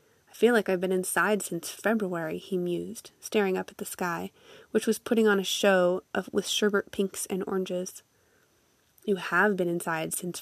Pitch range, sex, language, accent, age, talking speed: 185-230 Hz, female, English, American, 20-39, 180 wpm